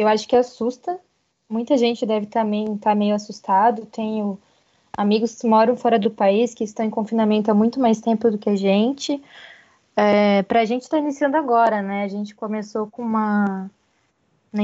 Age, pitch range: 10-29, 215-250 Hz